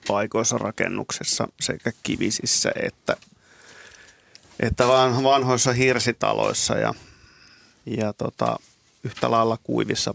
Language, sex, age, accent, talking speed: Finnish, male, 30-49, native, 85 wpm